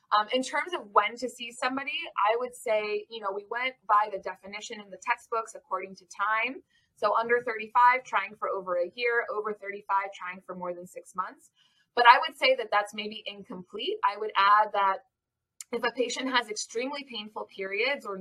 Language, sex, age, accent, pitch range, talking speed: English, female, 20-39, American, 190-245 Hz, 200 wpm